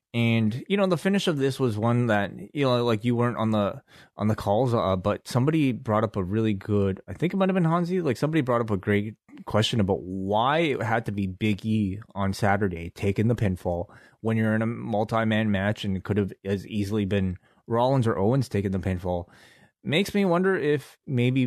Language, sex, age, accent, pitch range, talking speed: English, male, 20-39, American, 100-120 Hz, 220 wpm